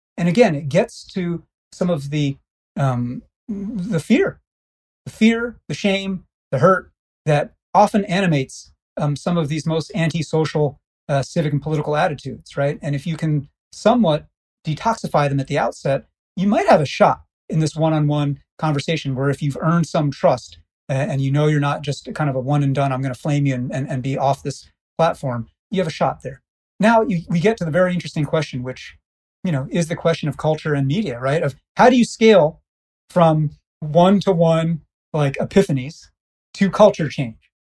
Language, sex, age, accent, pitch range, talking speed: English, male, 30-49, American, 145-190 Hz, 190 wpm